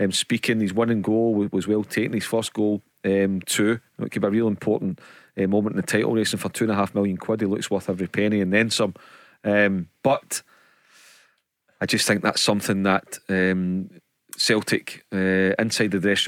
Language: English